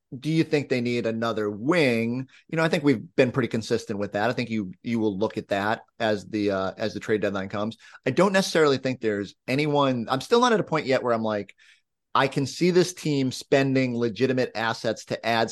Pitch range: 105-130 Hz